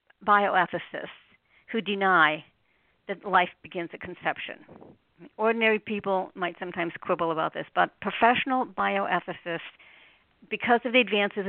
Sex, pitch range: female, 180-235 Hz